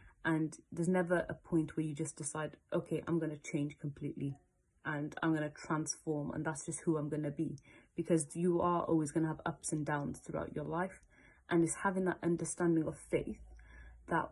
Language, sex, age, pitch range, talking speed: English, female, 30-49, 150-175 Hz, 205 wpm